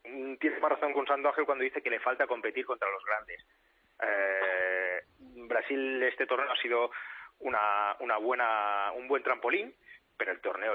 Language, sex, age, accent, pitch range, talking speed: Spanish, male, 30-49, Spanish, 125-190 Hz, 165 wpm